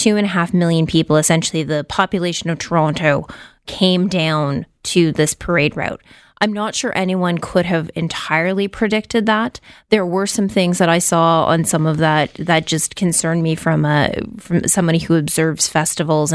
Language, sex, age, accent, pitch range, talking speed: English, female, 20-39, American, 160-180 Hz, 175 wpm